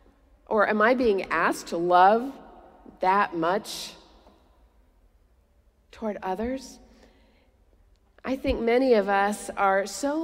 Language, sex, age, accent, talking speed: English, female, 50-69, American, 105 wpm